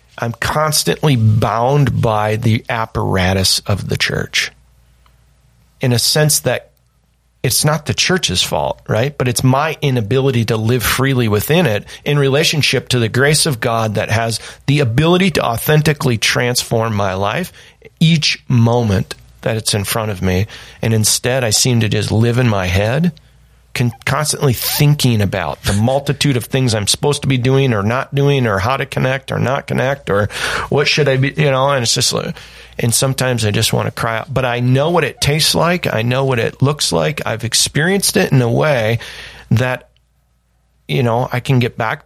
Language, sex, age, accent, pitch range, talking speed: English, male, 40-59, American, 110-140 Hz, 185 wpm